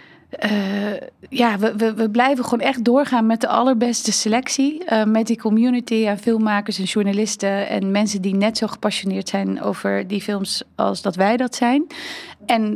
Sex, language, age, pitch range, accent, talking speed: female, Dutch, 30-49, 195-230 Hz, Dutch, 175 wpm